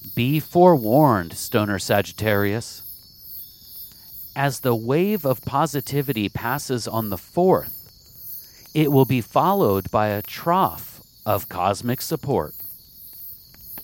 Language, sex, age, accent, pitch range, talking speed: English, male, 40-59, American, 105-150 Hz, 100 wpm